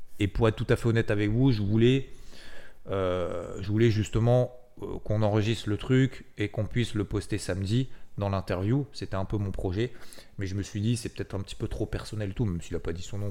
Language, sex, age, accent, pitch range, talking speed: French, male, 30-49, French, 95-115 Hz, 240 wpm